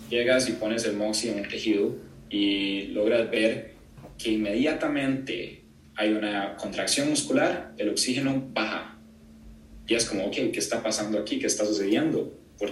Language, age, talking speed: Spanish, 20-39, 150 wpm